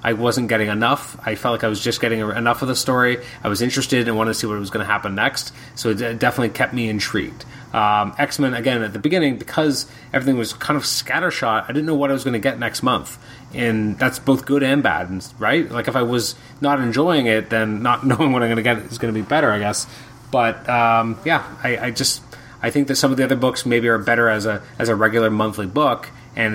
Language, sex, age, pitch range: English, male, 30-49, 115-135 Hz